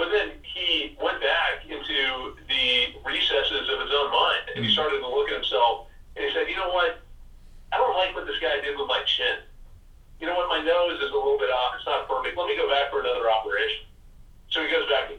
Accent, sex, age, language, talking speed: American, male, 40-59, English, 235 wpm